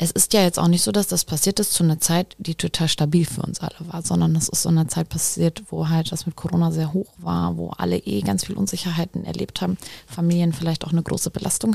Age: 20-39